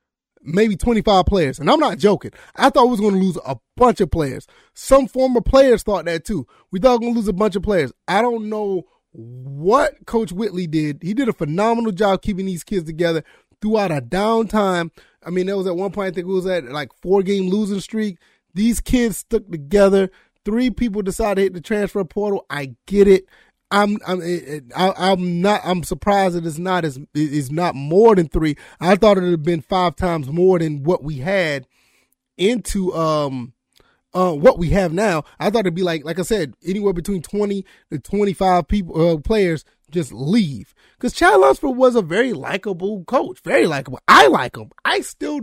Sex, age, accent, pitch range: male, 30-49, American, 170-215 Hz